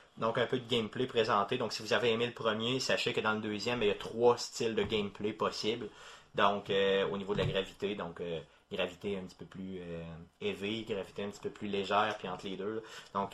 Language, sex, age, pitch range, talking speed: French, male, 30-49, 100-120 Hz, 240 wpm